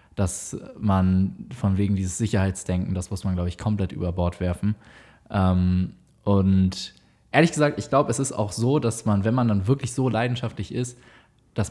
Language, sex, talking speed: German, male, 180 wpm